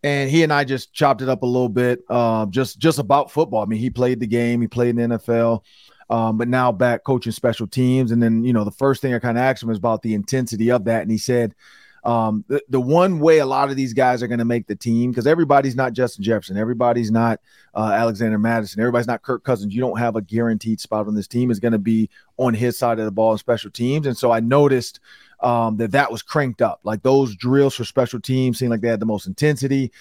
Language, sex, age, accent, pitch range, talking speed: English, male, 30-49, American, 115-135 Hz, 260 wpm